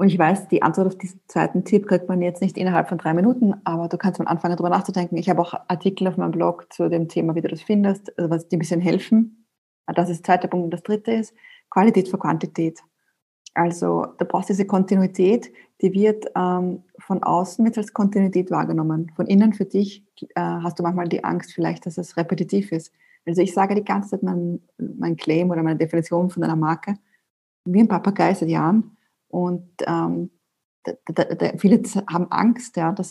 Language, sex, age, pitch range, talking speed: German, female, 20-39, 175-205 Hz, 205 wpm